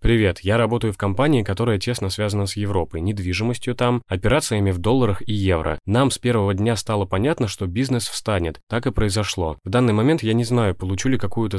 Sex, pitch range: male, 95-115 Hz